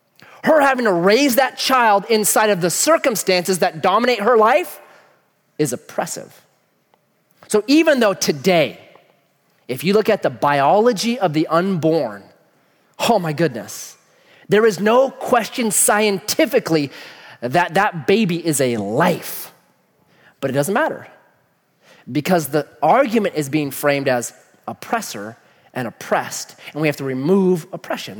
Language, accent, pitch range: English, American, 160-240 Hz